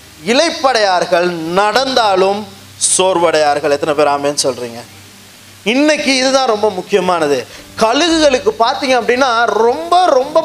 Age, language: 20-39, Tamil